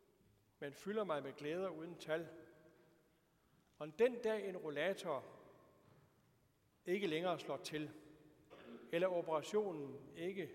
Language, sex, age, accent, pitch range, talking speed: Danish, male, 60-79, native, 150-190 Hz, 110 wpm